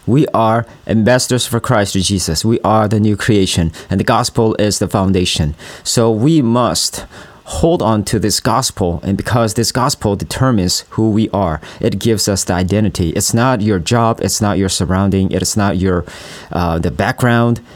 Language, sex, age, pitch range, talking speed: English, male, 40-59, 95-115 Hz, 180 wpm